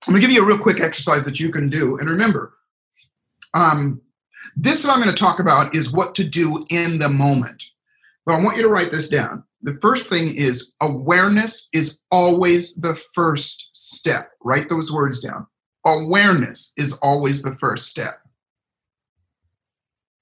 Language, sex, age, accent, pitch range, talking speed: English, male, 40-59, American, 135-175 Hz, 170 wpm